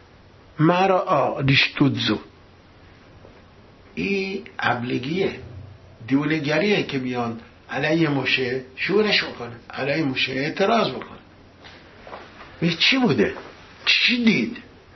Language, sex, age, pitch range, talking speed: English, male, 60-79, 130-180 Hz, 85 wpm